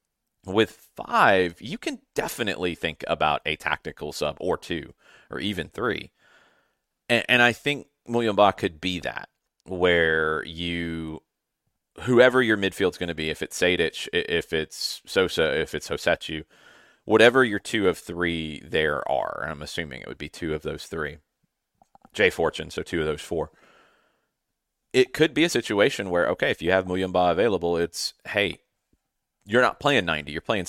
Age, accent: 30-49, American